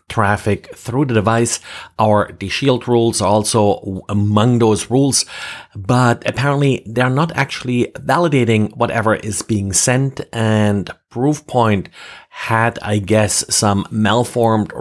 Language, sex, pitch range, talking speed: English, male, 105-125 Hz, 120 wpm